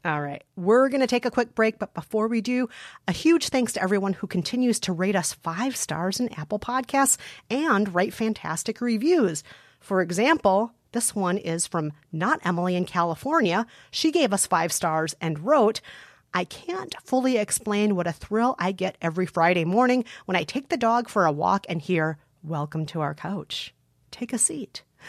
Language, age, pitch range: English, 40-59, 180-240 Hz